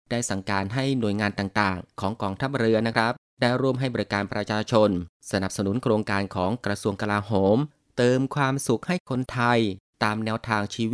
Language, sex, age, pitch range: Thai, male, 20-39, 100-130 Hz